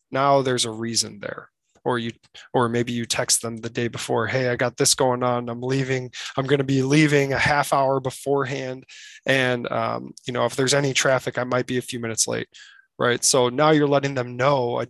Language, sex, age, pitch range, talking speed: English, male, 20-39, 125-145 Hz, 220 wpm